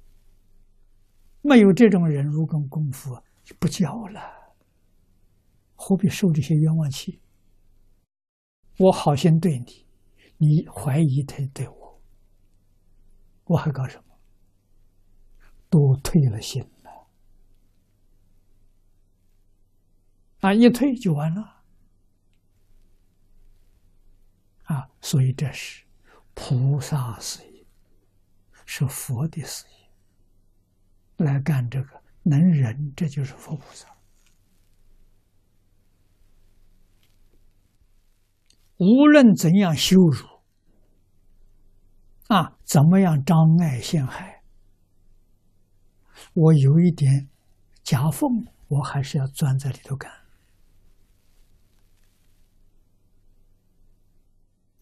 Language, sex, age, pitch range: Chinese, male, 60-79, 95-145 Hz